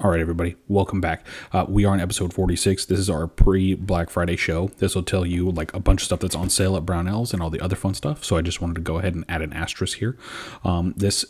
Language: English